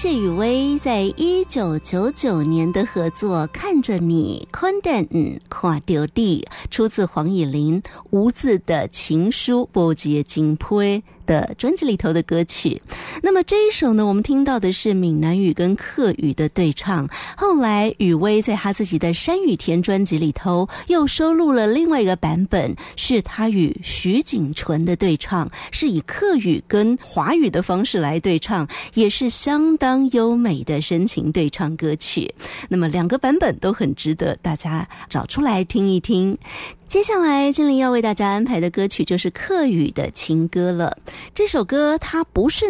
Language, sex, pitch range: Chinese, female, 175-265 Hz